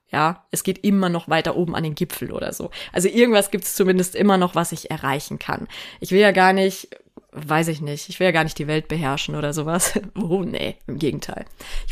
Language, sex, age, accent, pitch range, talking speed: German, female, 20-39, German, 170-210 Hz, 230 wpm